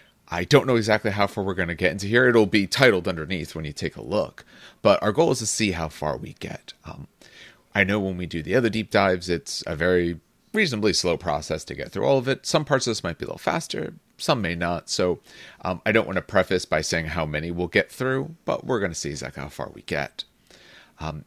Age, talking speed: 30-49, 255 wpm